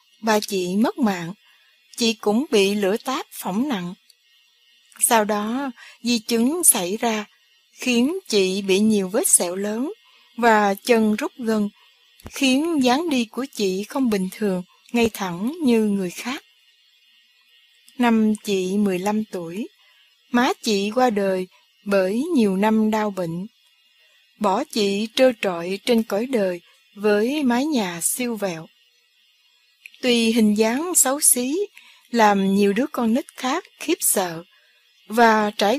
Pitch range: 200-250 Hz